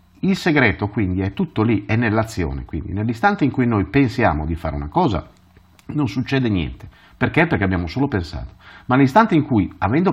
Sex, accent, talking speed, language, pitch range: male, native, 185 wpm, Italian, 90-140 Hz